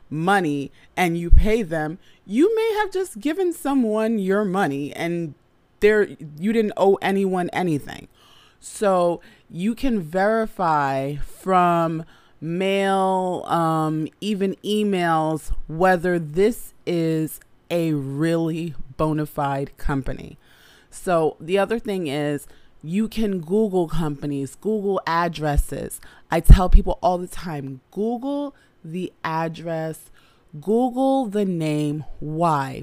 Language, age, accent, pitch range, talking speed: English, 30-49, American, 155-195 Hz, 110 wpm